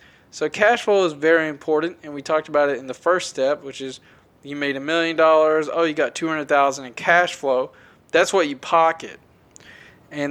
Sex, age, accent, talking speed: male, 20-39, American, 200 wpm